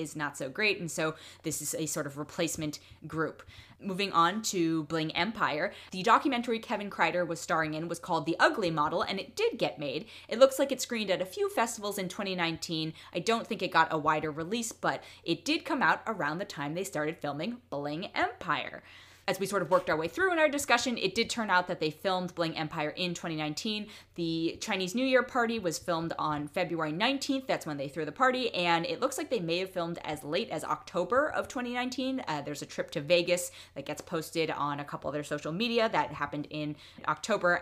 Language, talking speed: English, 220 wpm